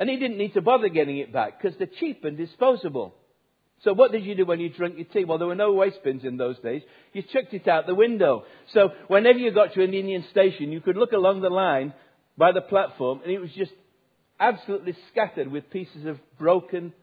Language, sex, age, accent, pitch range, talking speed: English, male, 60-79, British, 150-205 Hz, 235 wpm